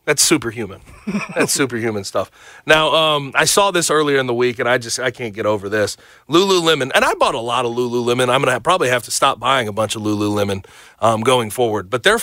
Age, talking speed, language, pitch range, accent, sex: 30-49, 230 wpm, English, 120-170 Hz, American, male